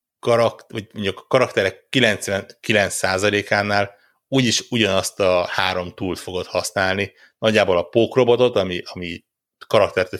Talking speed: 110 wpm